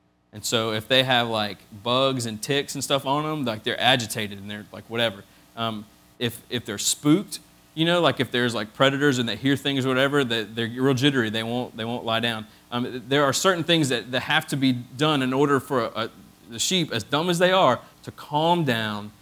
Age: 30-49